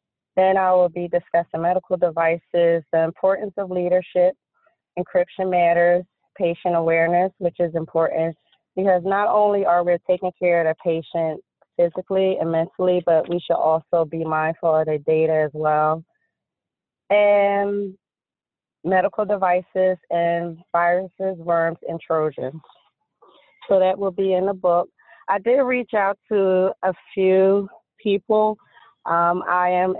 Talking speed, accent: 135 wpm, American